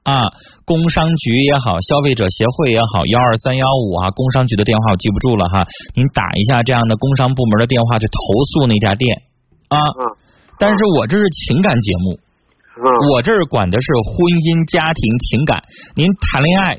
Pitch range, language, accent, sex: 110-165 Hz, Chinese, native, male